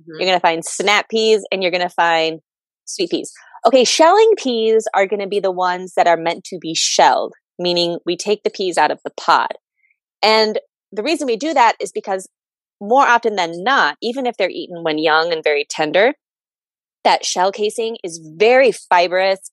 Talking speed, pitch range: 195 wpm, 170-225 Hz